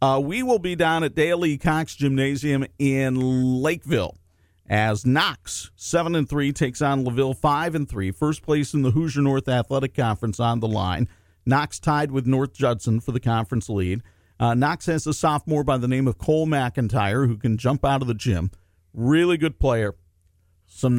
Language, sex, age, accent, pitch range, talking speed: English, male, 50-69, American, 110-150 Hz, 170 wpm